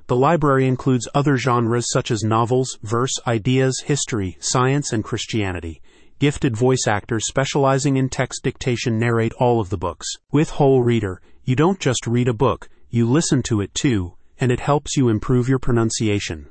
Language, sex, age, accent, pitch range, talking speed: English, male, 30-49, American, 110-135 Hz, 170 wpm